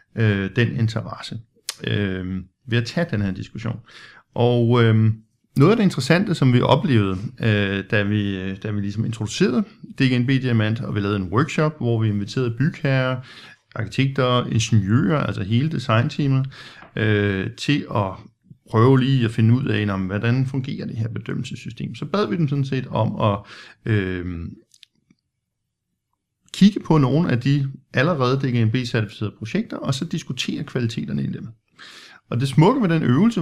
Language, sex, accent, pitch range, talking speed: Danish, male, native, 110-140 Hz, 155 wpm